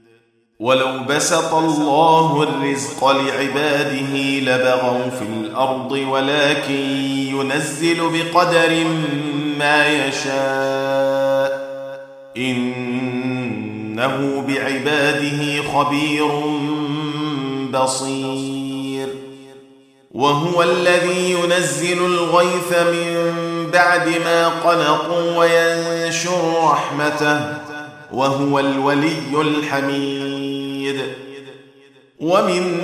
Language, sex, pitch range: Arabic, male, 135-170 Hz